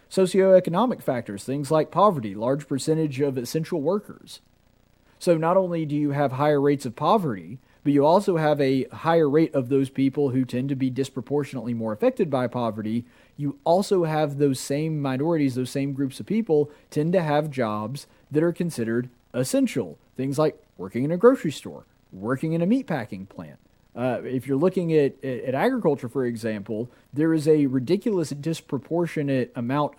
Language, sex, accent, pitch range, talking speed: English, male, American, 125-160 Hz, 170 wpm